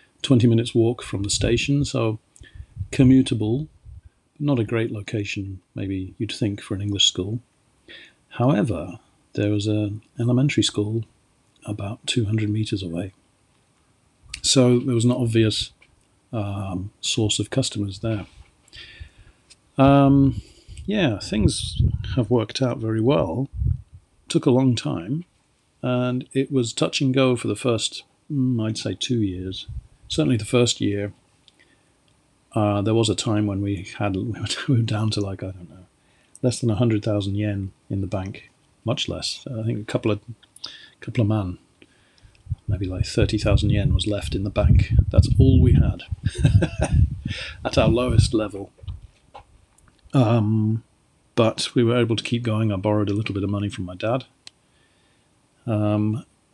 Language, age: English, 50-69